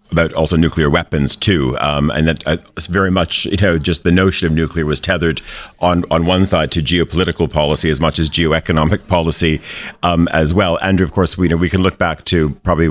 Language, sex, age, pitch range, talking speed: English, male, 40-59, 75-90 Hz, 225 wpm